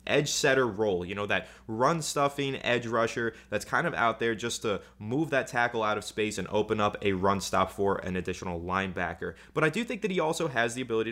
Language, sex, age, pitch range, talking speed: English, male, 20-39, 110-135 Hz, 215 wpm